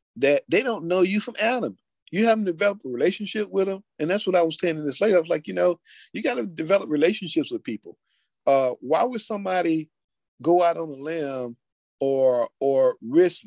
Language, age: English, 50-69